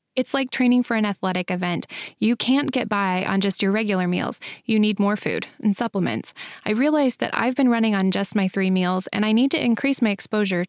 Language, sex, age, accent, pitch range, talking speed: English, female, 20-39, American, 195-230 Hz, 225 wpm